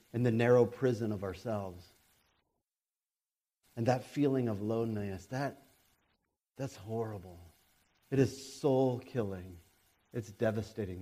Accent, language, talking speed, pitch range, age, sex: American, English, 110 wpm, 115-180 Hz, 40-59, male